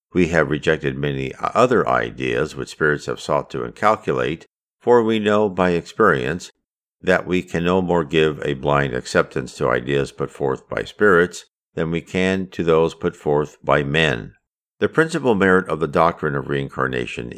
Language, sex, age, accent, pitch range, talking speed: English, male, 50-69, American, 70-100 Hz, 170 wpm